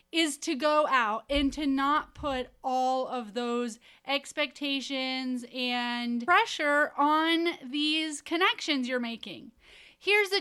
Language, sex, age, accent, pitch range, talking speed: English, female, 30-49, American, 265-325 Hz, 120 wpm